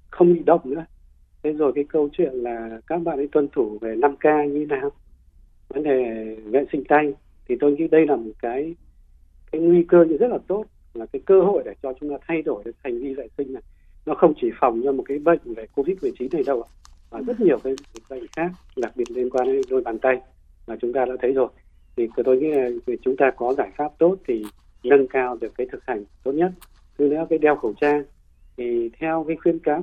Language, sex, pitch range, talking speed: Vietnamese, male, 115-170 Hz, 240 wpm